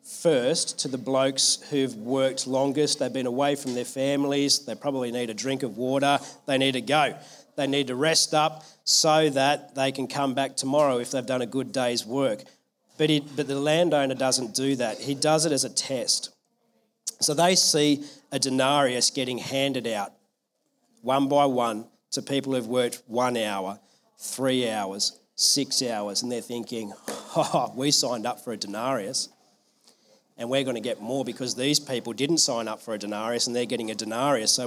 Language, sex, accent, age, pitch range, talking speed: English, male, Australian, 40-59, 130-155 Hz, 190 wpm